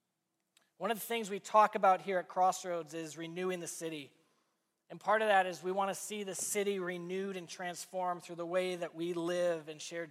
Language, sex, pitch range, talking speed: English, male, 170-200 Hz, 215 wpm